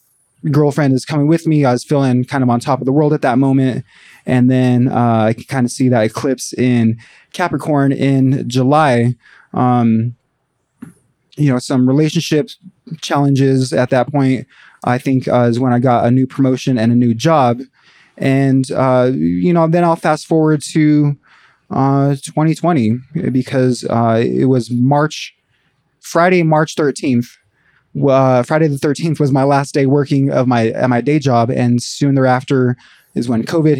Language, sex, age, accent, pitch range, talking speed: English, male, 20-39, American, 120-145 Hz, 170 wpm